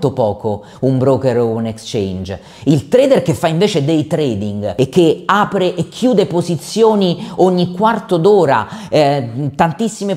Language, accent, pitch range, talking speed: Italian, native, 135-190 Hz, 140 wpm